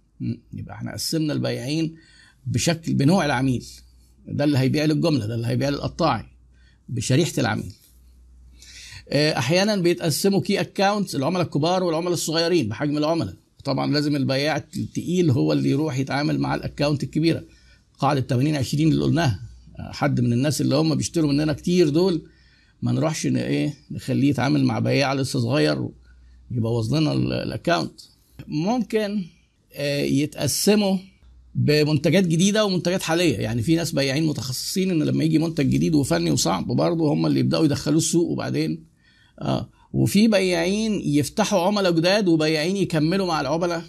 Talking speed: 135 wpm